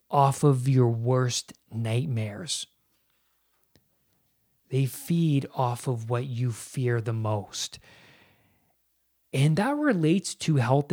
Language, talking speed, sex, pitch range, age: English, 105 wpm, male, 120-145 Hz, 30-49